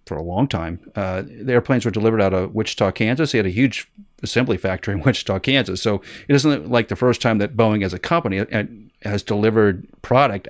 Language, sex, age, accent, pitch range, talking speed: English, male, 40-59, American, 100-125 Hz, 210 wpm